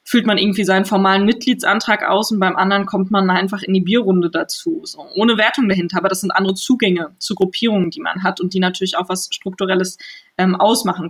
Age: 20-39